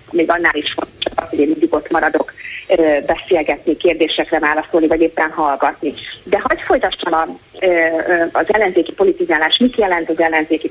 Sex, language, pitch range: female, Hungarian, 165-225 Hz